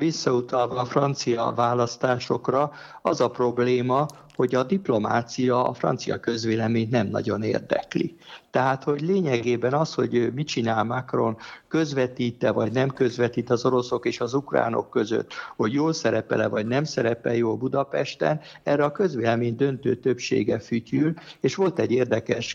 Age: 60-79